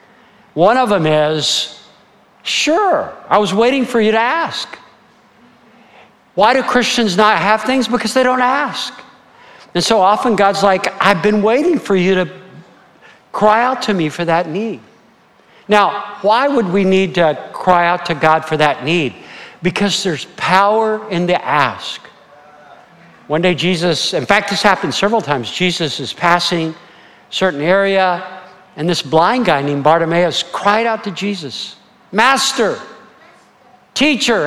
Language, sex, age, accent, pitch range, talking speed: English, male, 60-79, American, 175-220 Hz, 150 wpm